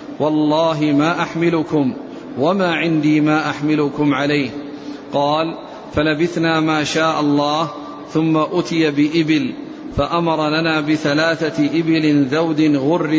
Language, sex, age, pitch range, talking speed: Arabic, male, 50-69, 150-170 Hz, 100 wpm